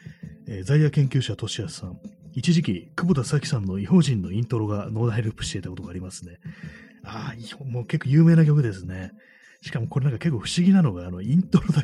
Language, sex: Japanese, male